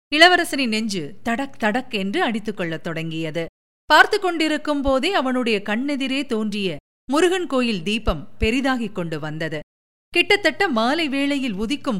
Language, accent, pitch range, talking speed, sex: Tamil, native, 210-300 Hz, 115 wpm, female